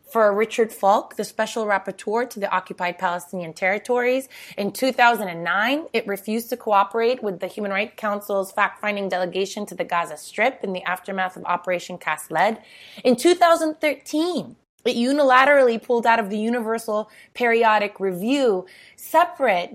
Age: 20-39